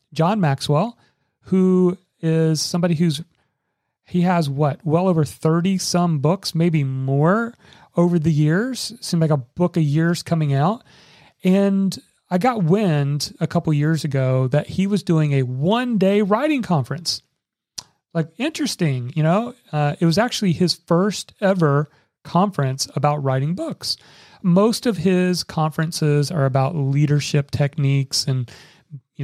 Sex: male